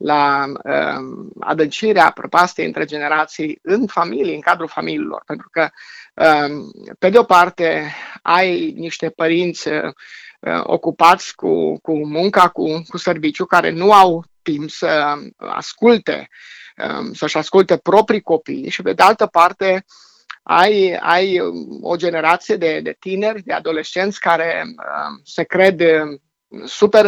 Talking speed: 120 wpm